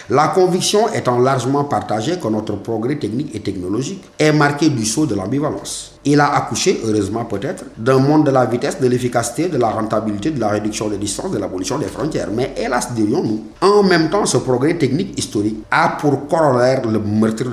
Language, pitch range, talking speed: French, 120-155 Hz, 190 wpm